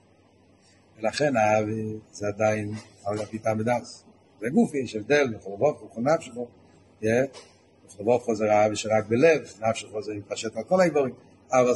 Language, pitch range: Hebrew, 100-140 Hz